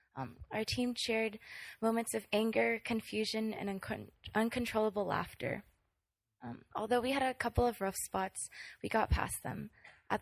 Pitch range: 195-225 Hz